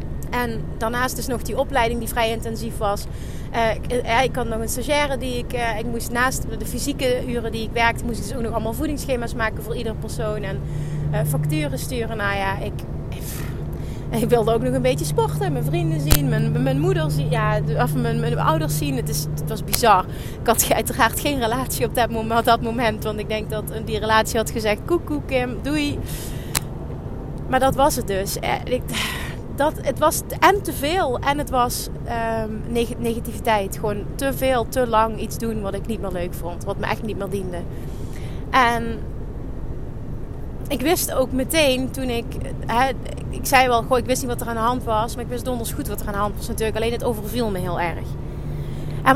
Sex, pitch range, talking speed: female, 150-230 Hz, 210 wpm